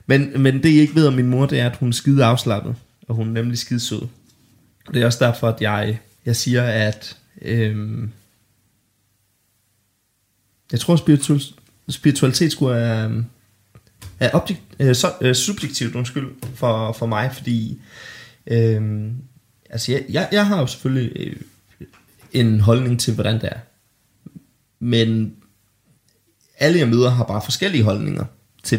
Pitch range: 105-130 Hz